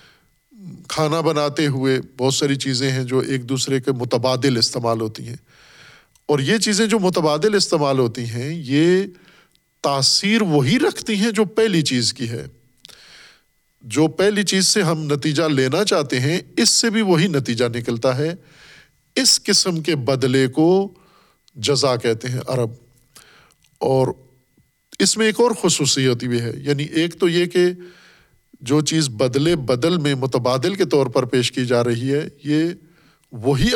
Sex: male